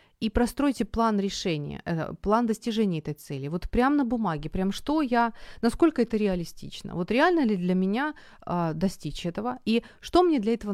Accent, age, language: native, 30-49, Ukrainian